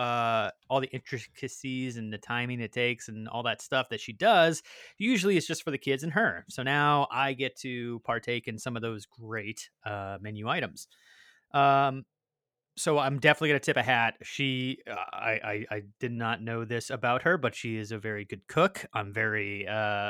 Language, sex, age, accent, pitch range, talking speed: English, male, 30-49, American, 115-150 Hz, 200 wpm